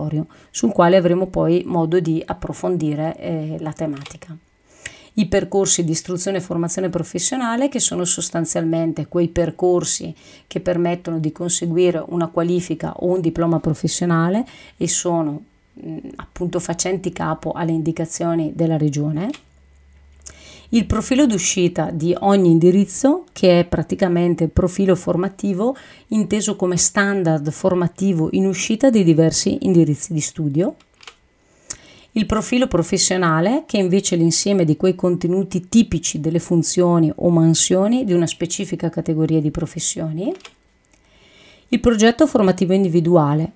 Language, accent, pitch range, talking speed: Italian, native, 165-195 Hz, 120 wpm